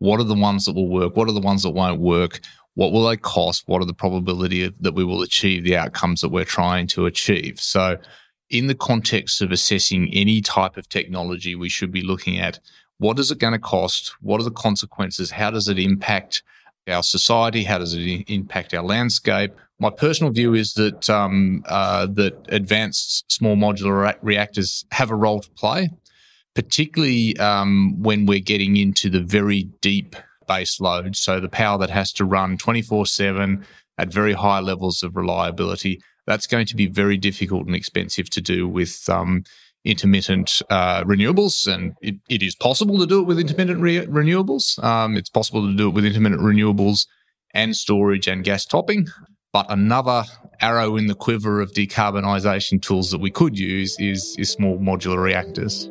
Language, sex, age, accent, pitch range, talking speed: English, male, 20-39, Australian, 95-110 Hz, 180 wpm